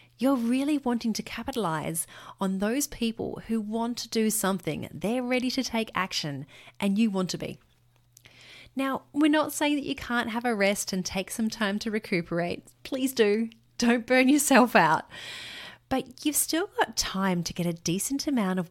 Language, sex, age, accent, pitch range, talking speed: English, female, 30-49, Australian, 165-235 Hz, 180 wpm